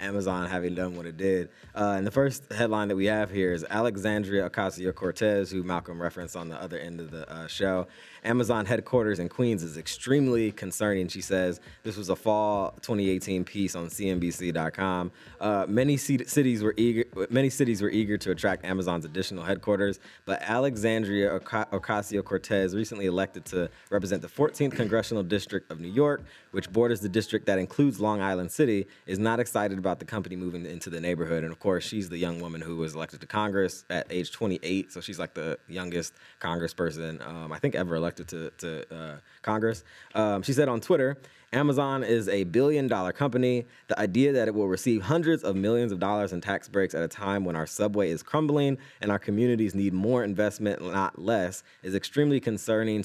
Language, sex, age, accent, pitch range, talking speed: English, male, 20-39, American, 90-115 Hz, 190 wpm